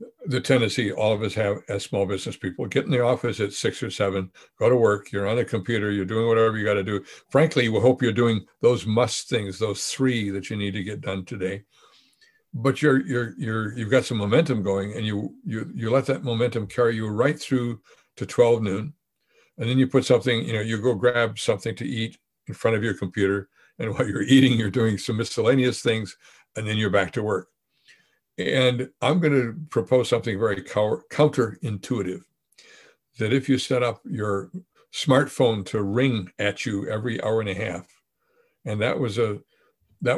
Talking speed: 195 wpm